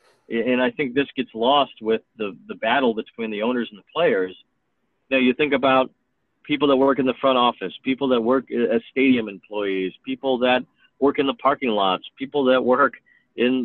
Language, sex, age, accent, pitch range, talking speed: English, male, 50-69, American, 110-130 Hz, 195 wpm